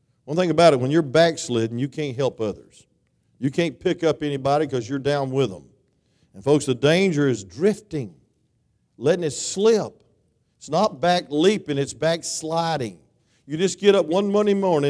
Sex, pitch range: male, 130-185 Hz